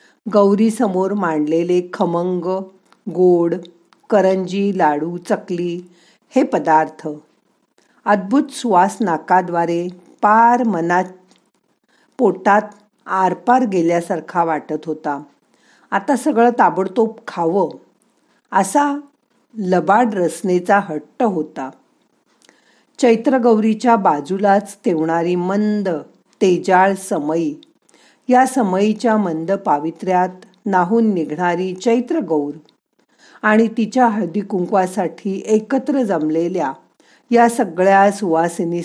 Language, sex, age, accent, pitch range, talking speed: Marathi, female, 50-69, native, 175-235 Hz, 80 wpm